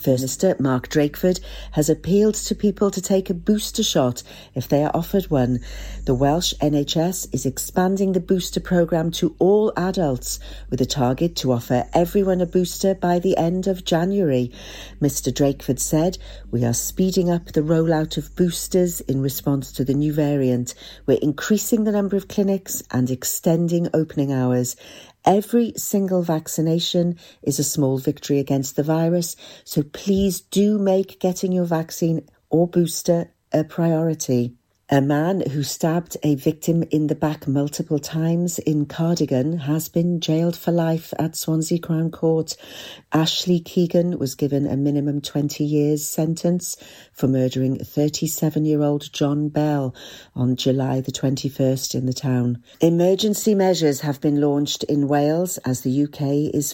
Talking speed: 150 wpm